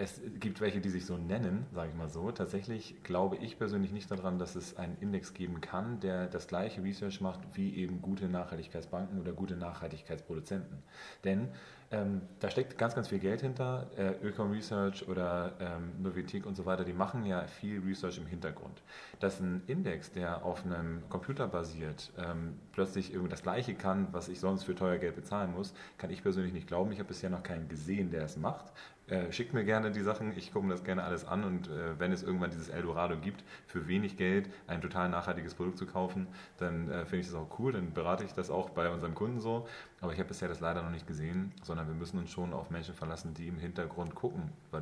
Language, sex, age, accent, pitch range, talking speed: German, male, 30-49, German, 85-95 Hz, 220 wpm